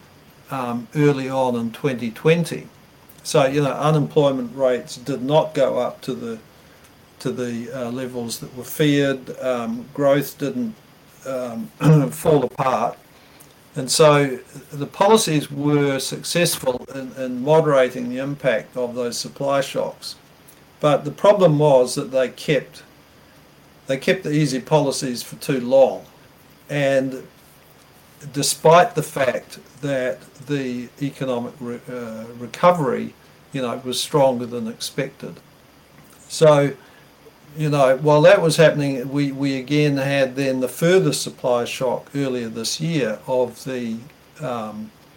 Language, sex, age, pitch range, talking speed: English, male, 50-69, 125-145 Hz, 130 wpm